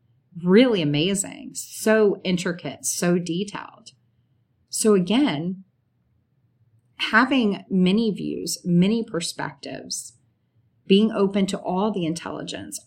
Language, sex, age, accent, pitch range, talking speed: English, female, 30-49, American, 150-185 Hz, 90 wpm